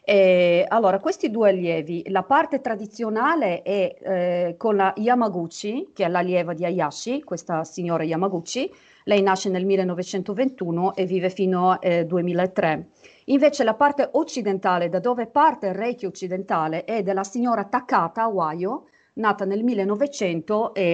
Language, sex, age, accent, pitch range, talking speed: Italian, female, 40-59, native, 175-210 Hz, 140 wpm